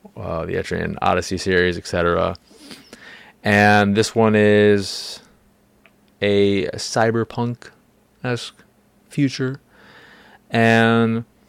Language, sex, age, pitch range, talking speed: English, male, 20-39, 95-110 Hz, 80 wpm